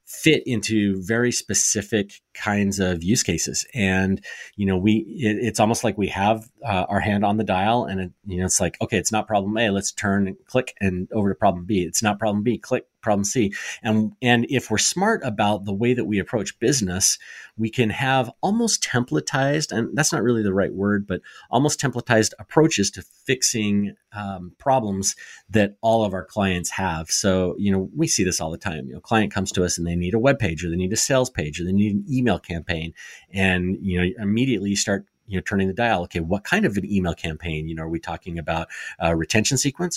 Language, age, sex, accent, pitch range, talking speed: English, 30-49, male, American, 95-115 Hz, 225 wpm